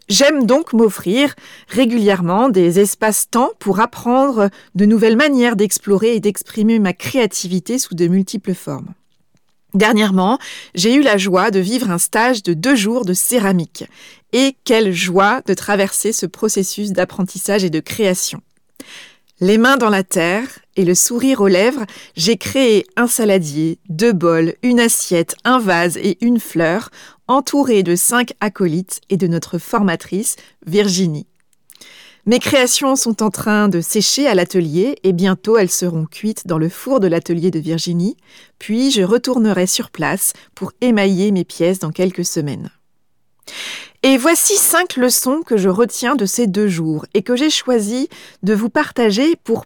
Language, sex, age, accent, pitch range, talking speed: French, female, 40-59, French, 185-245 Hz, 160 wpm